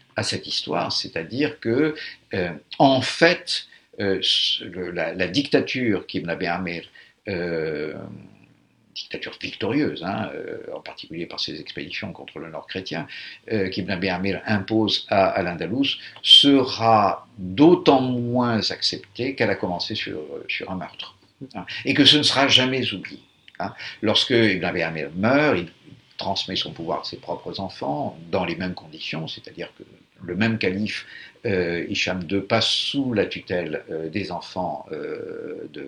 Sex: male